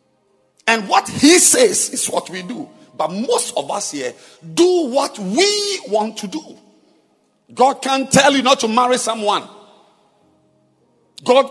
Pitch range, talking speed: 220-325 Hz, 145 wpm